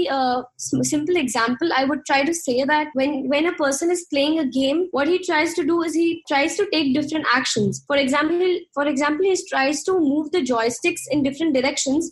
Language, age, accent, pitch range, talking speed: English, 20-39, Indian, 265-325 Hz, 210 wpm